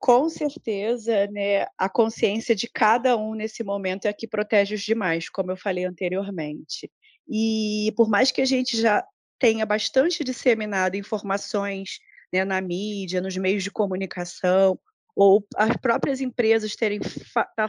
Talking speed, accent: 150 wpm, Brazilian